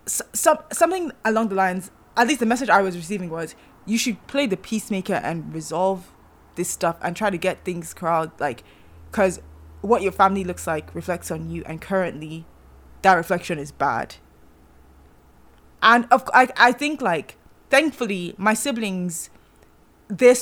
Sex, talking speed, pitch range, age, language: female, 160 wpm, 165-220 Hz, 20-39, English